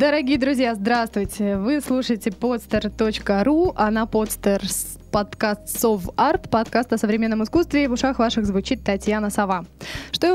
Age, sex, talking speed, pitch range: 20-39, female, 135 wpm, 210-255 Hz